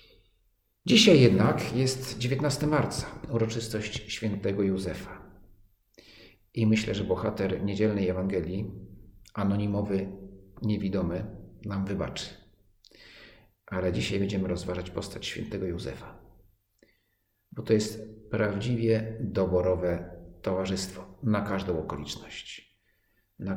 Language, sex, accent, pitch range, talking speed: Polish, male, native, 95-110 Hz, 90 wpm